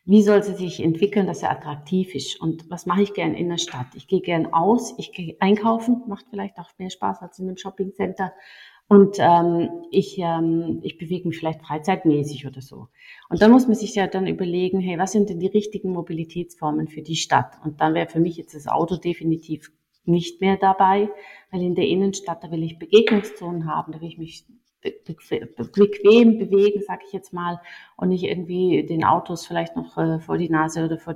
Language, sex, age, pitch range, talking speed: German, female, 30-49, 160-195 Hz, 200 wpm